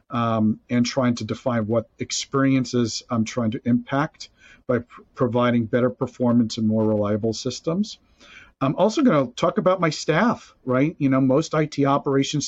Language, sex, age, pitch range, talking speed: English, male, 40-59, 120-140 Hz, 165 wpm